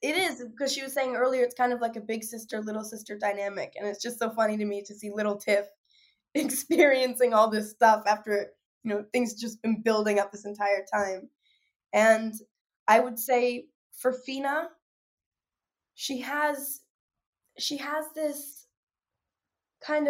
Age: 10-29